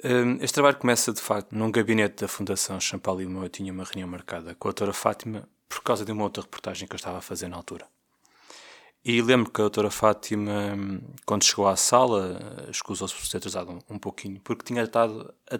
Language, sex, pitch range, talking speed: Portuguese, male, 100-115 Hz, 210 wpm